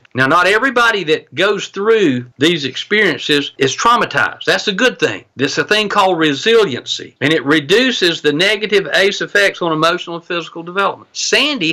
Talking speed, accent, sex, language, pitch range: 165 wpm, American, male, English, 150-215 Hz